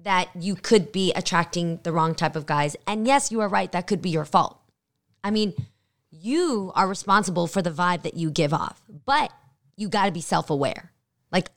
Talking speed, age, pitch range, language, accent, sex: 200 wpm, 20-39, 165-205 Hz, English, American, female